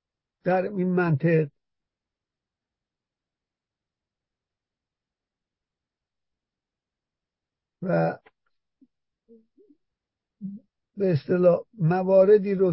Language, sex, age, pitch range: Persian, male, 60-79, 150-180 Hz